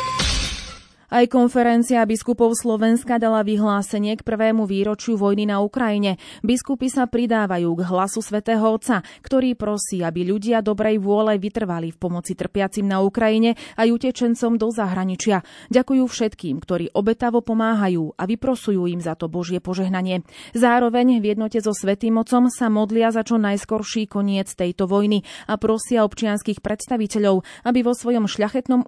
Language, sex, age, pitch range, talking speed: Slovak, female, 30-49, 190-235 Hz, 145 wpm